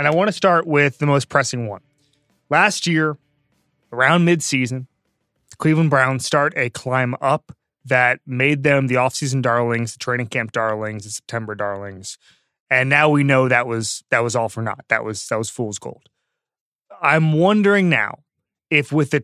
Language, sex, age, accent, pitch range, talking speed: English, male, 30-49, American, 120-150 Hz, 175 wpm